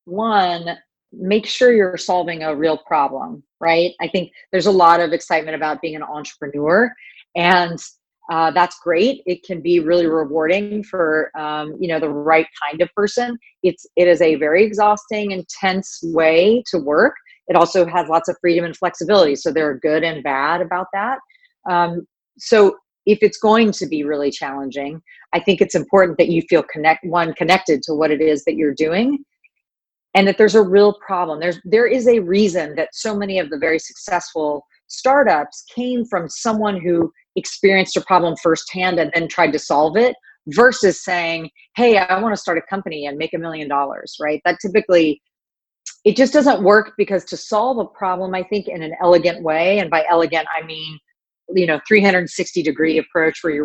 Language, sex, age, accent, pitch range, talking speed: English, female, 40-59, American, 160-200 Hz, 190 wpm